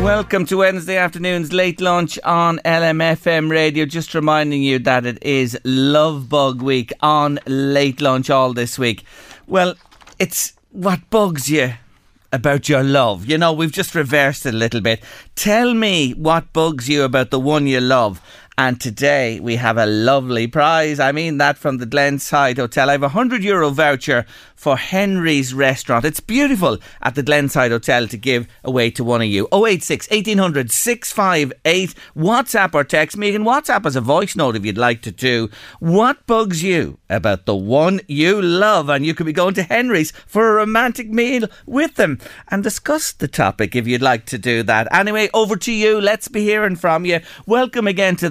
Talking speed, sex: 180 wpm, male